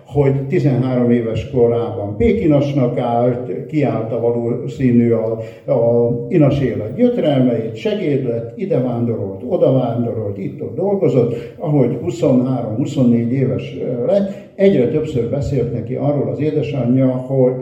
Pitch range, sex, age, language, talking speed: 120-145 Hz, male, 60-79, Hungarian, 110 wpm